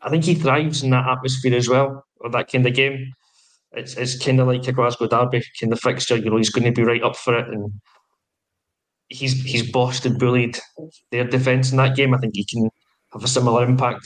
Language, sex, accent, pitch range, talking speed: English, male, British, 120-130 Hz, 220 wpm